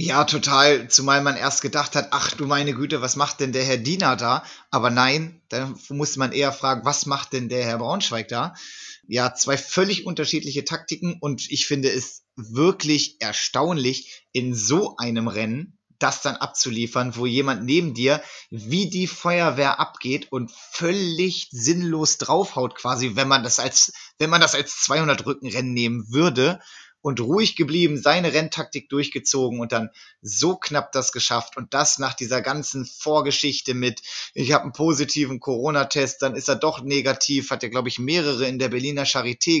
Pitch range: 125-150 Hz